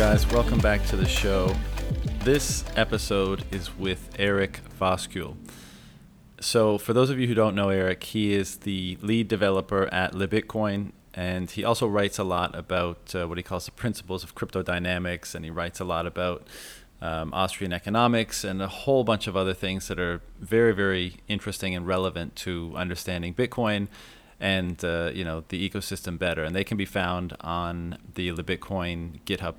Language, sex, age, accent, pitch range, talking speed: English, male, 30-49, American, 90-105 Hz, 175 wpm